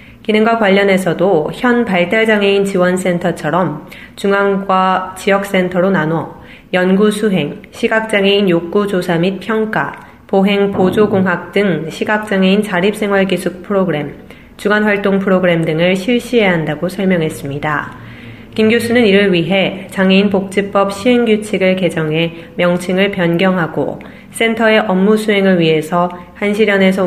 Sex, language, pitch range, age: female, Korean, 175-200 Hz, 30-49